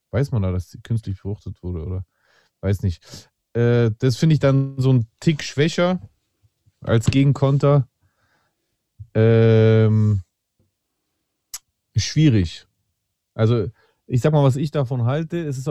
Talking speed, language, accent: 135 wpm, German, German